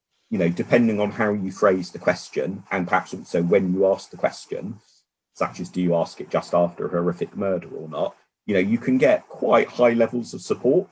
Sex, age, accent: male, 40-59, British